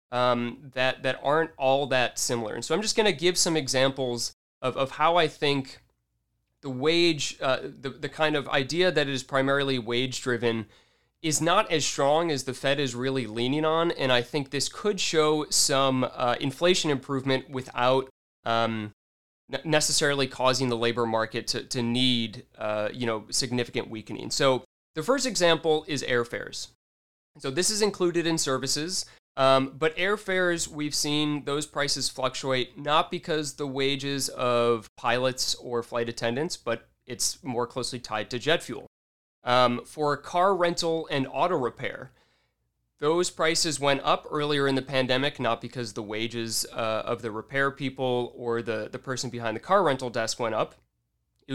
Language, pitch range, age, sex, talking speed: English, 120-150 Hz, 20-39, male, 170 wpm